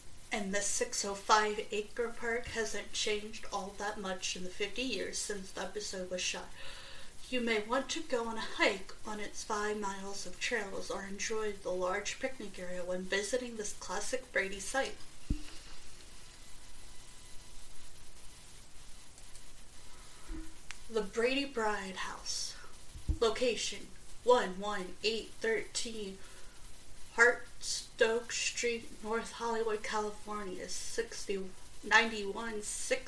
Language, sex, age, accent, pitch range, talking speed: English, female, 30-49, American, 200-235 Hz, 110 wpm